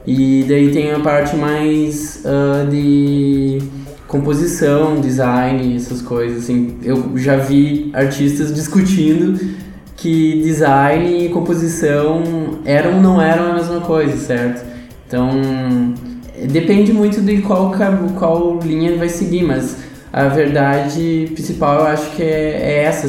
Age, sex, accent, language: 20-39, male, Brazilian, Portuguese